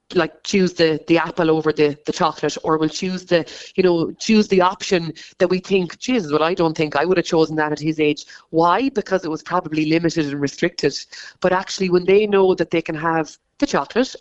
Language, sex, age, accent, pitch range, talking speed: English, female, 30-49, Irish, 160-190 Hz, 225 wpm